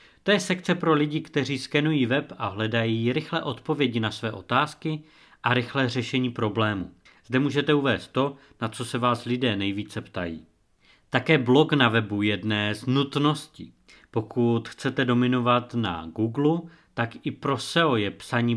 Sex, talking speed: male, 155 wpm